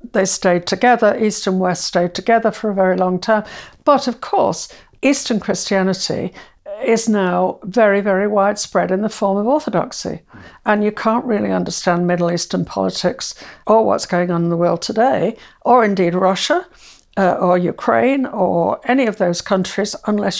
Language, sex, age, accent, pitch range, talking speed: English, female, 60-79, British, 185-245 Hz, 165 wpm